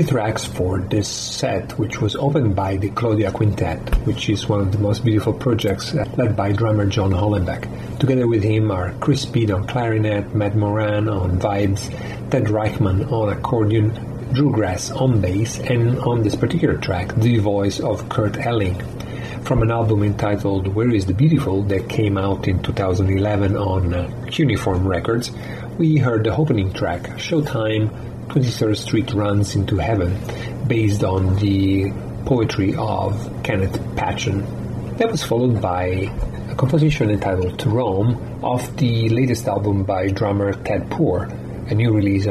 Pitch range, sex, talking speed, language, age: 100-120 Hz, male, 155 wpm, English, 40-59